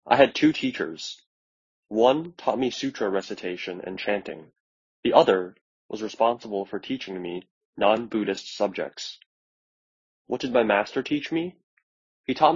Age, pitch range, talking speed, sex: 20-39, 90-120 Hz, 135 wpm, male